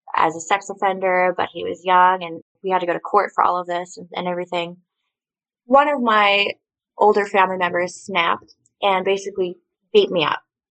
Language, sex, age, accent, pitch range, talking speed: English, female, 20-39, American, 170-195 Hz, 190 wpm